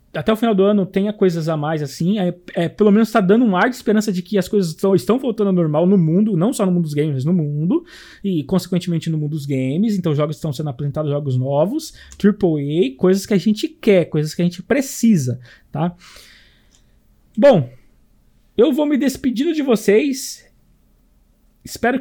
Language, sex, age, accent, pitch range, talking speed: Portuguese, male, 20-39, Brazilian, 155-215 Hz, 200 wpm